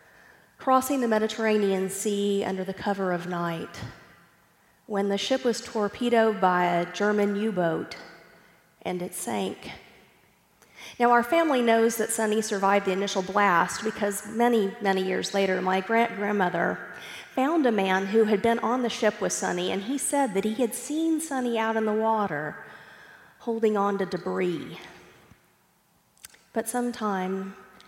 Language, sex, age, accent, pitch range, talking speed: English, female, 40-59, American, 185-225 Hz, 150 wpm